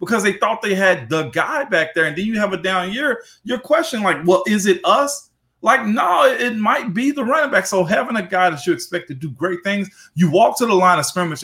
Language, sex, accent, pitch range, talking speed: English, male, American, 150-215 Hz, 255 wpm